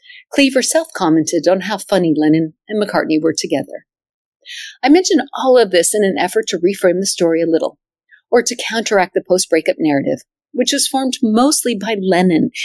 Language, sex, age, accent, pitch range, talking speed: English, female, 50-69, American, 185-275 Hz, 170 wpm